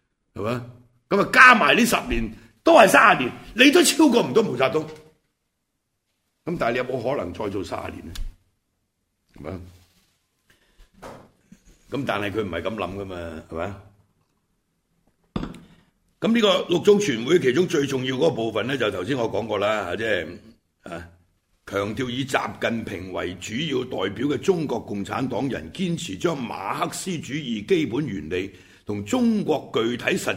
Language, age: Chinese, 60-79